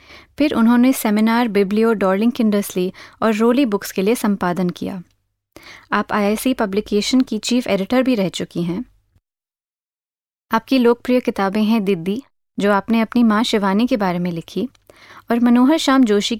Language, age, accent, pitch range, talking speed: Hindi, 30-49, native, 190-240 Hz, 150 wpm